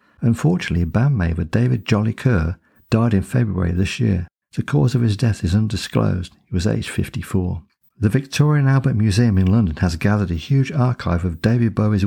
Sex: male